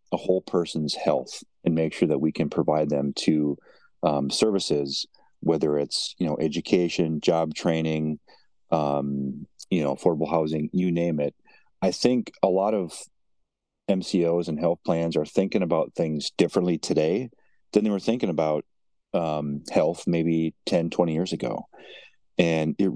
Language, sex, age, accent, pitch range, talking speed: English, male, 40-59, American, 75-85 Hz, 155 wpm